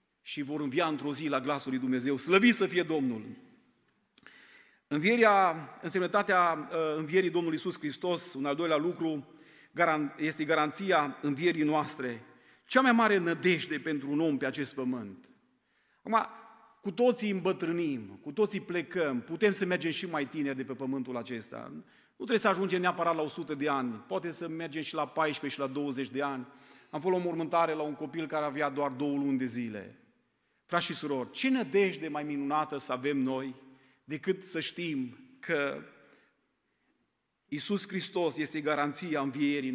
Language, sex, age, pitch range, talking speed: Romanian, male, 40-59, 140-180 Hz, 165 wpm